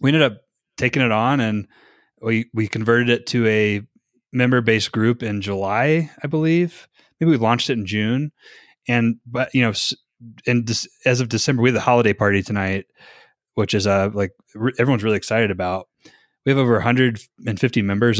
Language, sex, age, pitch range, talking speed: English, male, 20-39, 100-120 Hz, 180 wpm